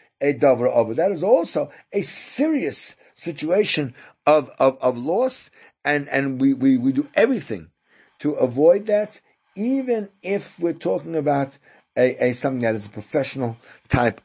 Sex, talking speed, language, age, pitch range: male, 145 wpm, English, 50-69, 130-185 Hz